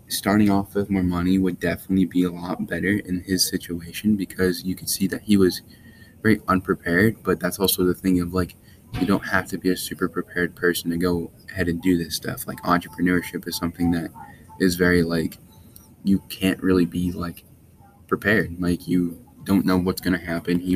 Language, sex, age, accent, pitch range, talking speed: English, male, 10-29, American, 90-95 Hz, 200 wpm